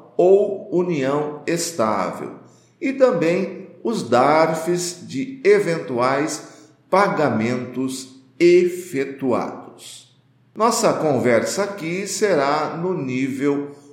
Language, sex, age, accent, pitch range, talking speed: Portuguese, male, 50-69, Brazilian, 130-195 Hz, 75 wpm